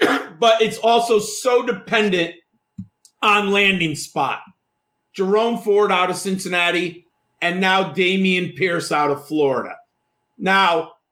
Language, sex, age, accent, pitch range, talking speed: English, male, 40-59, American, 185-270 Hz, 115 wpm